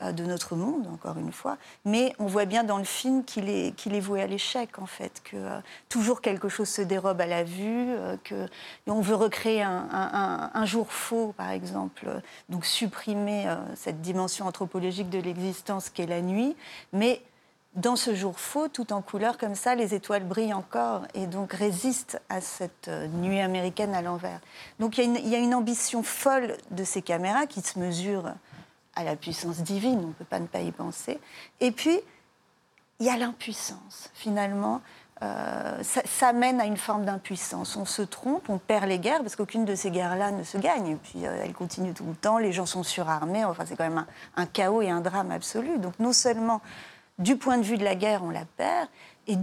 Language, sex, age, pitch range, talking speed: French, female, 40-59, 185-235 Hz, 205 wpm